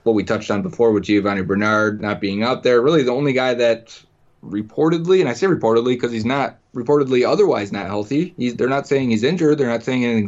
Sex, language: male, English